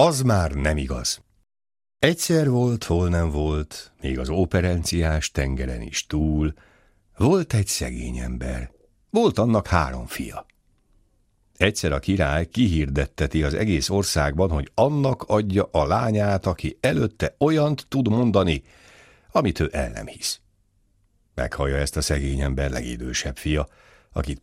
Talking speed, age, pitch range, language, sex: 130 wpm, 60-79, 75-105 Hz, Hungarian, male